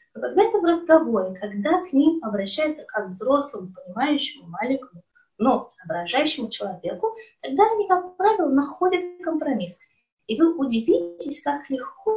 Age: 20-39